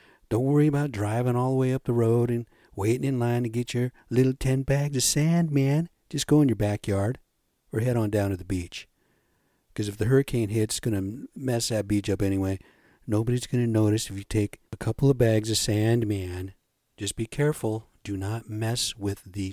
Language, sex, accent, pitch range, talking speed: English, male, American, 100-130 Hz, 215 wpm